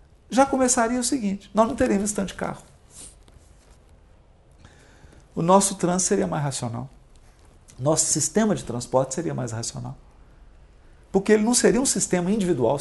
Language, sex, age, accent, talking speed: Portuguese, male, 50-69, Brazilian, 140 wpm